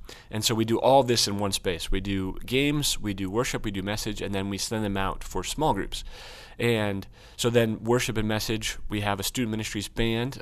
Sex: male